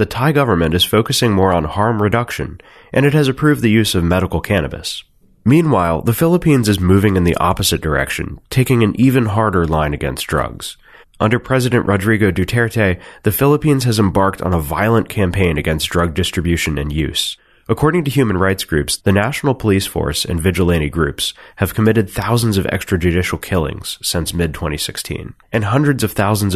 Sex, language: male, English